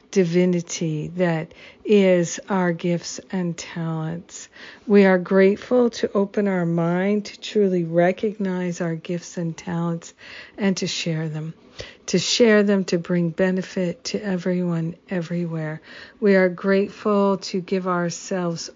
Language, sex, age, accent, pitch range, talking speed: English, female, 50-69, American, 175-195 Hz, 130 wpm